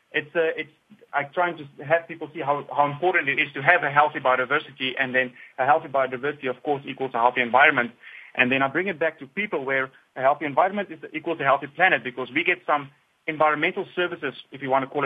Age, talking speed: 30-49, 230 wpm